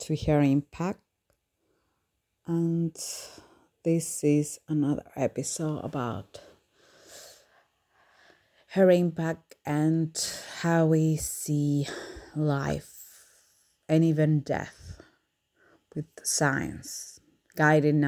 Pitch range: 135-160 Hz